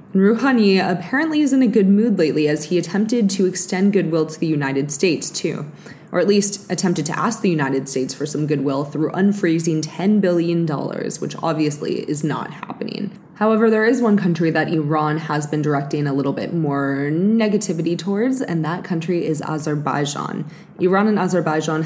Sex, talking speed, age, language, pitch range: female, 175 wpm, 20-39, English, 150-190 Hz